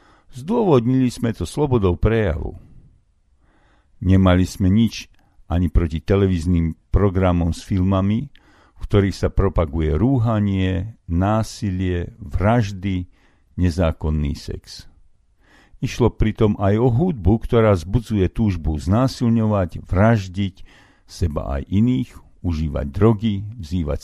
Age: 50-69